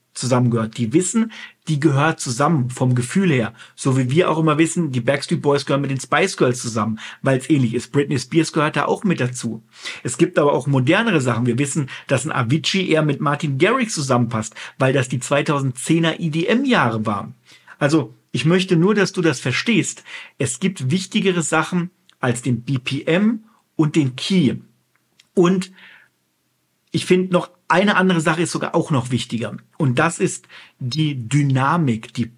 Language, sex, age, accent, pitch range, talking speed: German, male, 50-69, German, 125-170 Hz, 170 wpm